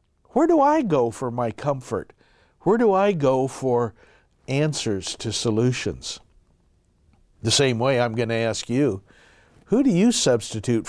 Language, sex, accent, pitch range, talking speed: English, male, American, 120-160 Hz, 150 wpm